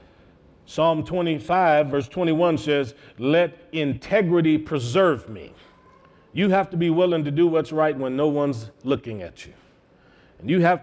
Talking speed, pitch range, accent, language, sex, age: 150 wpm, 140-185 Hz, American, English, male, 40-59